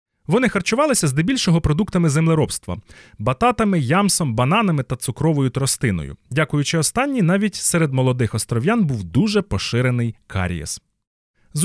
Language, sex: Ukrainian, male